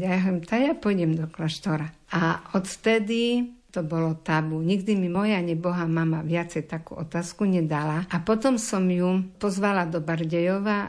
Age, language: 50-69, Slovak